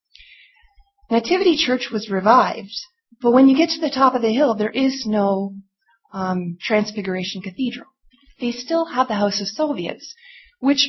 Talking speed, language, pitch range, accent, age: 155 wpm, English, 200-260 Hz, American, 40-59